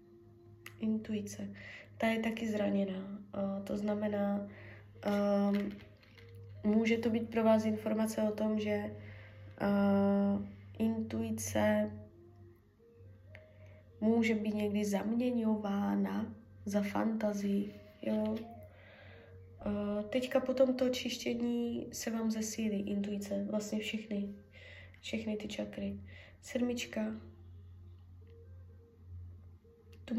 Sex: female